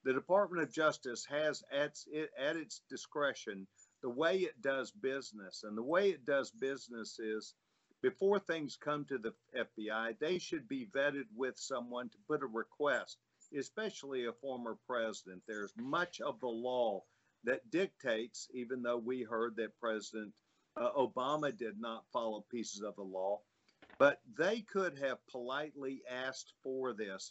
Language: English